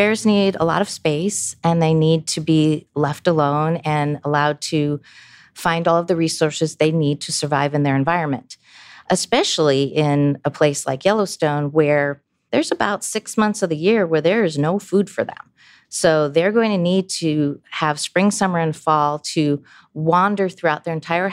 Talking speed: 185 wpm